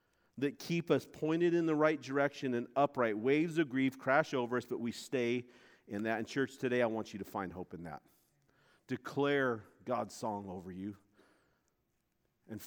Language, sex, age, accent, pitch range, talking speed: English, male, 50-69, American, 135-225 Hz, 180 wpm